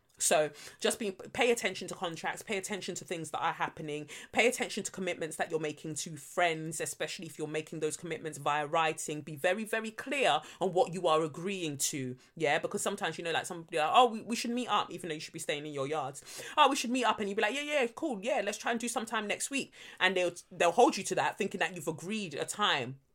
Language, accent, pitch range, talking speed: English, British, 155-200 Hz, 255 wpm